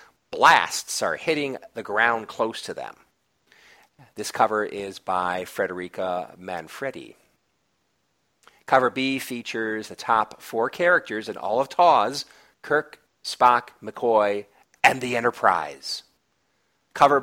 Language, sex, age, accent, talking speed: English, male, 40-59, American, 110 wpm